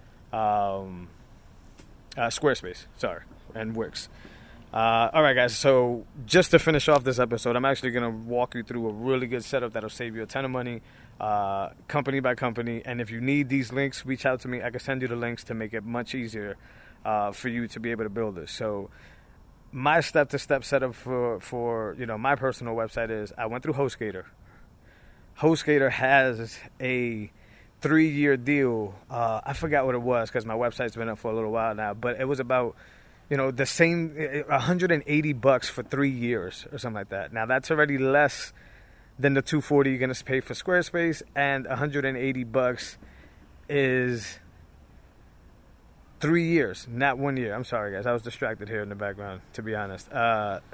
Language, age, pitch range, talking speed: English, 20-39, 110-135 Hz, 185 wpm